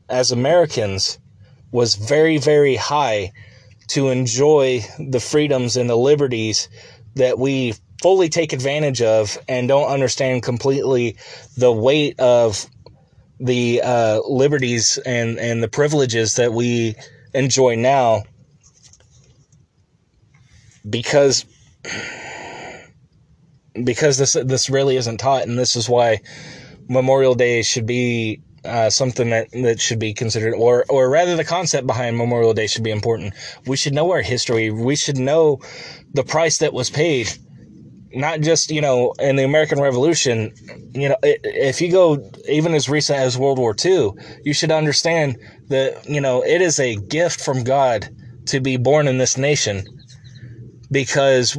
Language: English